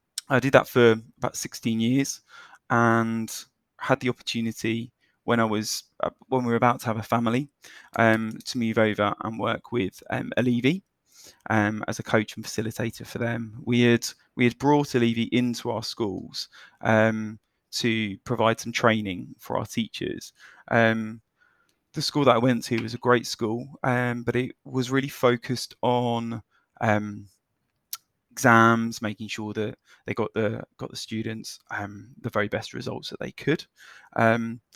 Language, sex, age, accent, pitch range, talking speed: English, male, 20-39, British, 110-125 Hz, 160 wpm